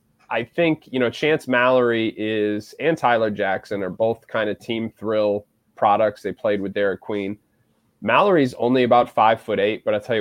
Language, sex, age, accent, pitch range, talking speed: English, male, 20-39, American, 105-125 Hz, 180 wpm